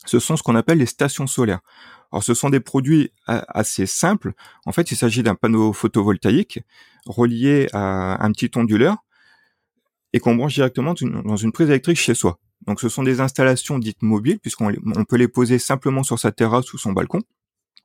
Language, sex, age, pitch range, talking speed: French, male, 30-49, 110-145 Hz, 185 wpm